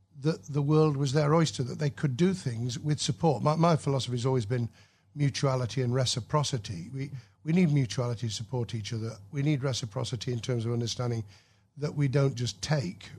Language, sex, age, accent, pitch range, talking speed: English, male, 50-69, British, 115-140 Hz, 190 wpm